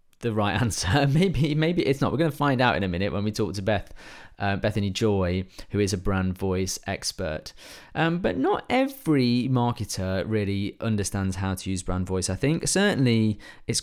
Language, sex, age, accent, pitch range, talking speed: English, male, 30-49, British, 100-125 Hz, 195 wpm